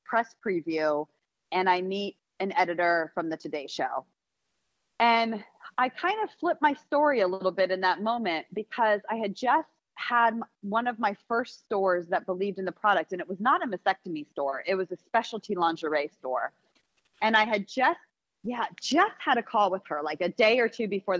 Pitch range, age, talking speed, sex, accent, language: 175-230 Hz, 30-49, 195 wpm, female, American, English